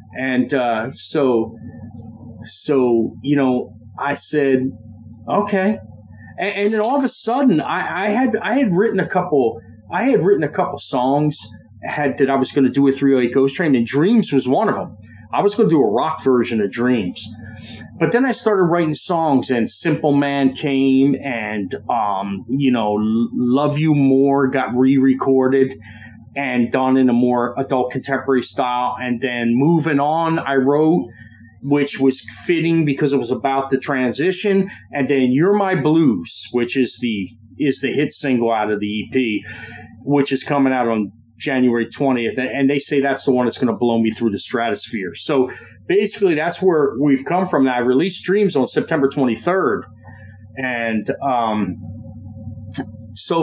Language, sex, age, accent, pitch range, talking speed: English, male, 30-49, American, 115-145 Hz, 170 wpm